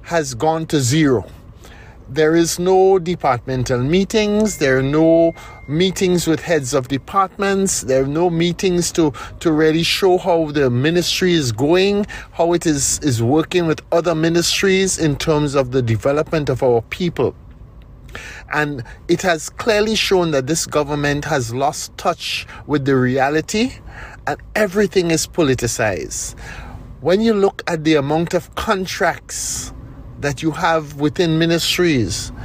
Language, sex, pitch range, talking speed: English, male, 130-175 Hz, 140 wpm